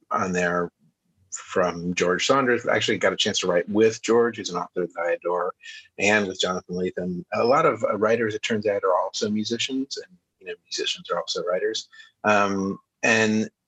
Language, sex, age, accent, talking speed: English, male, 30-49, American, 185 wpm